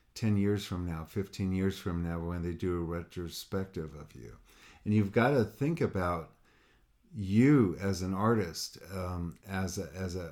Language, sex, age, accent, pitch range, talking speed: English, male, 50-69, American, 90-110 Hz, 175 wpm